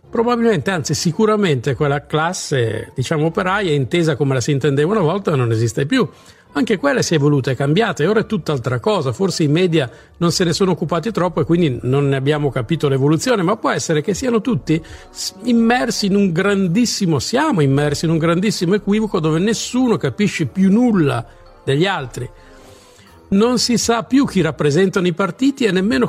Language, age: Italian, 50-69